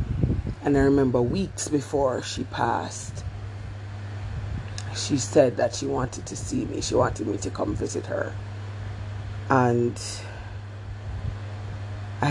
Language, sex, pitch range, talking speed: English, female, 100-125 Hz, 115 wpm